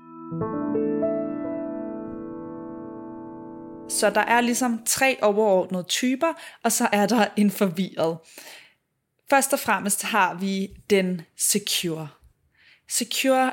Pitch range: 185-230 Hz